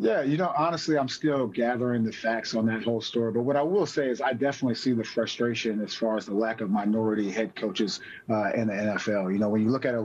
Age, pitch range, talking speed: 30-49, 115-140 Hz, 265 wpm